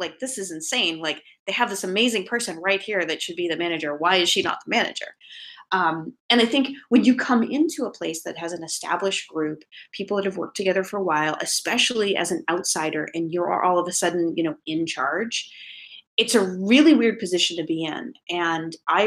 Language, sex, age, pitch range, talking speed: English, female, 30-49, 165-200 Hz, 220 wpm